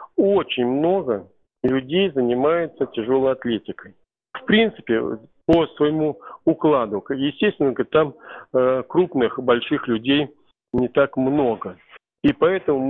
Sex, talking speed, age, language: male, 100 wpm, 40-59, Russian